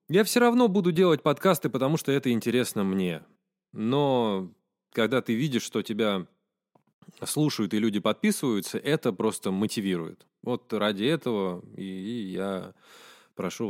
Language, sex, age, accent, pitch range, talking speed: Russian, male, 20-39, native, 105-170 Hz, 125 wpm